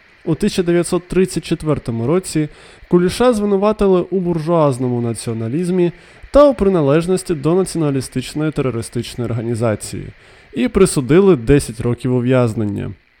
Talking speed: 90 wpm